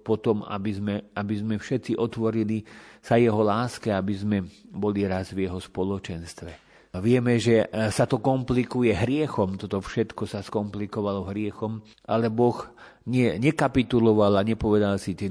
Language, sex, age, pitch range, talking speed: Slovak, male, 40-59, 95-110 Hz, 150 wpm